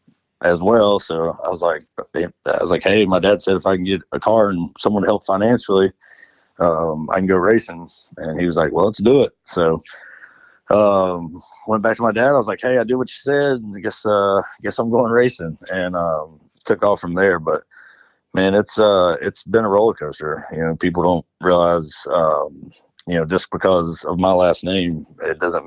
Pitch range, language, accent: 85-105 Hz, English, American